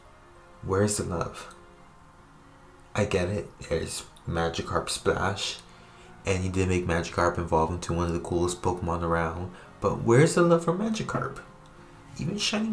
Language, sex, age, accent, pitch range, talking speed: English, male, 20-39, American, 85-115 Hz, 140 wpm